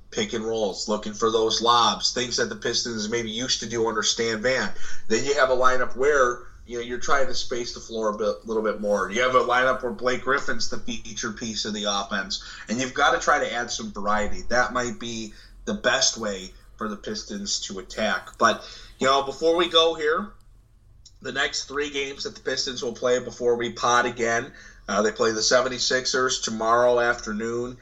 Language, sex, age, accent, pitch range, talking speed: English, male, 30-49, American, 110-140 Hz, 215 wpm